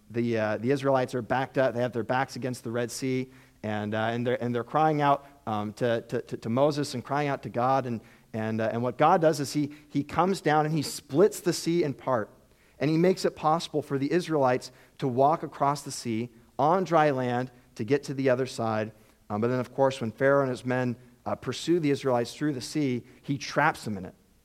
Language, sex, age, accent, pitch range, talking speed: English, male, 40-59, American, 120-145 Hz, 235 wpm